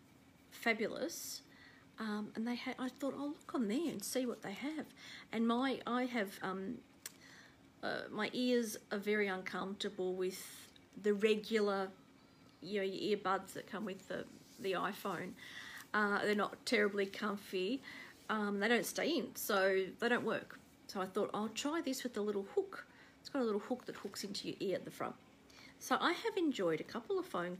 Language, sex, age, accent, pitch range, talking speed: English, female, 40-59, Australian, 200-255 Hz, 185 wpm